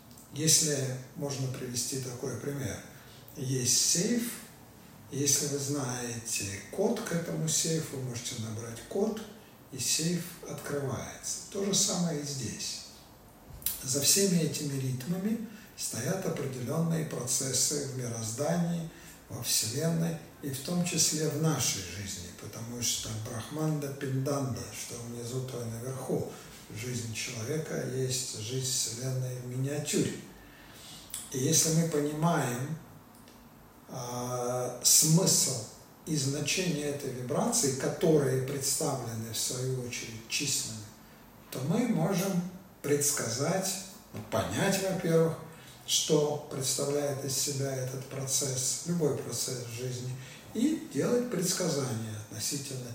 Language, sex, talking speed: Russian, male, 110 wpm